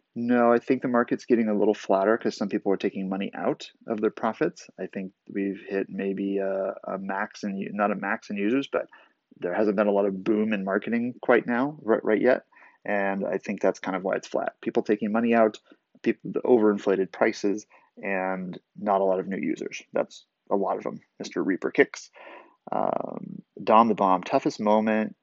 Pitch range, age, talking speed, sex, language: 100-115 Hz, 30-49, 205 wpm, male, English